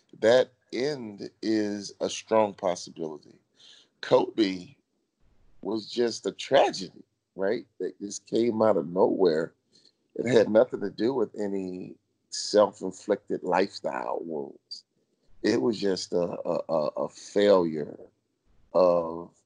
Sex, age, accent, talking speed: male, 30-49, American, 110 wpm